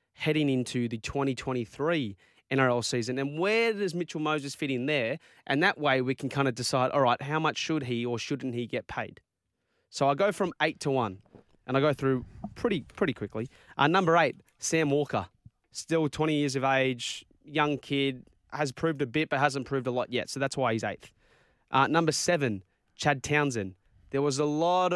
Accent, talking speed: Australian, 200 wpm